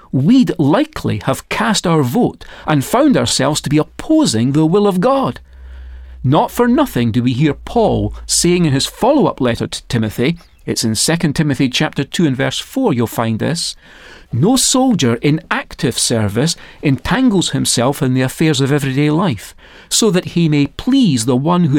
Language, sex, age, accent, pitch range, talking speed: English, male, 40-59, British, 120-180 Hz, 175 wpm